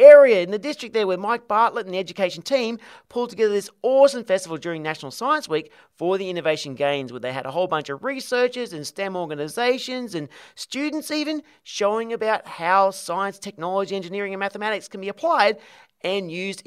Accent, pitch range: Australian, 150-230 Hz